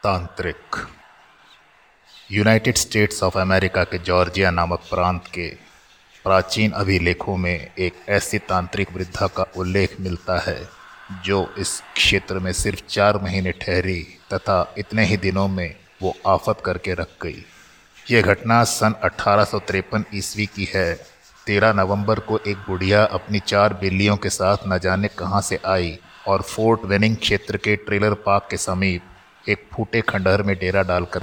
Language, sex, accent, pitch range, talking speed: Hindi, male, native, 95-105 Hz, 145 wpm